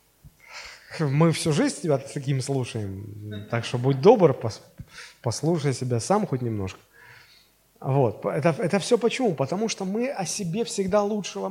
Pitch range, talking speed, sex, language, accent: 140-205 Hz, 140 wpm, male, Russian, native